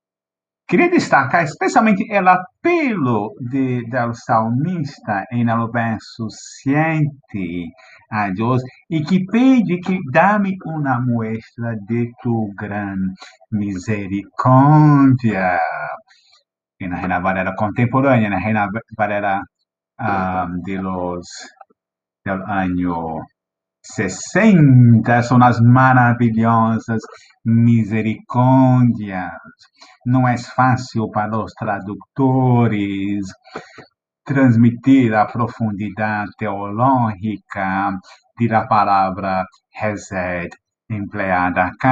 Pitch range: 100-130 Hz